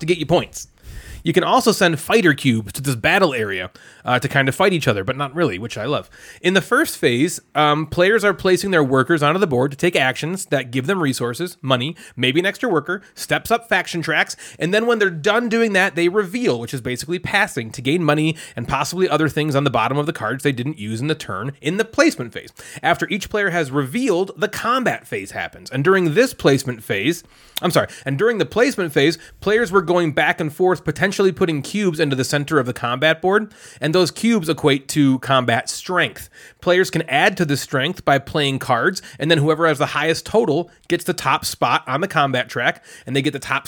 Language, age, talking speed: English, 30-49, 225 wpm